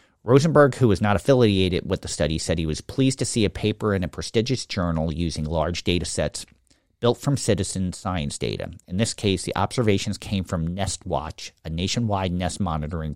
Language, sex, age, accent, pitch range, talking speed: English, male, 50-69, American, 85-105 Hz, 185 wpm